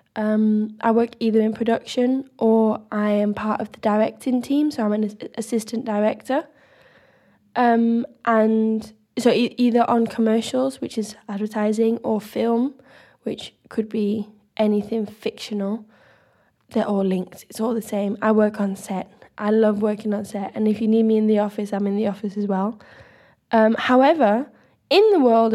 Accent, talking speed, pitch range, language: British, 165 wpm, 215-240 Hz, English